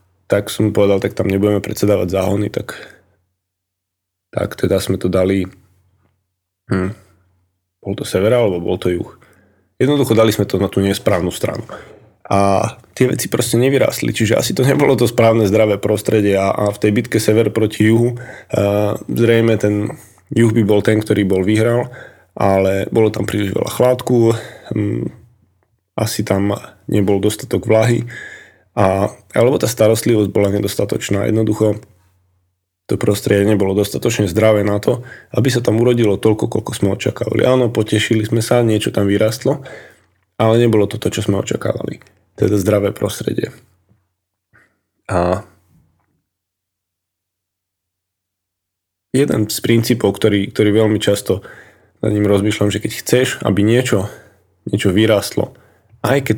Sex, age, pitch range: male, 20-39, 95-110 Hz